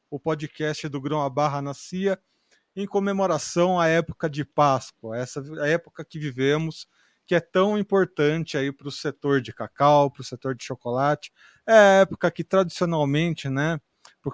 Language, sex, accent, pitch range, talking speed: Portuguese, male, Brazilian, 140-165 Hz, 160 wpm